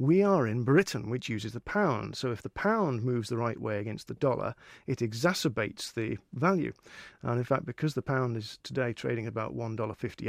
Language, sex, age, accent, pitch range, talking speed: English, male, 40-59, British, 115-150 Hz, 210 wpm